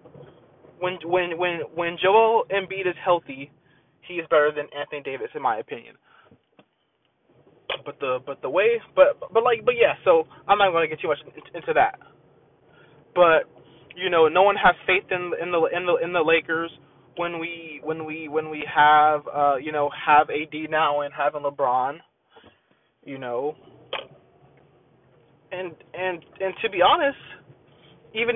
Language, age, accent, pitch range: English, 20-39, American, 155-225 Hz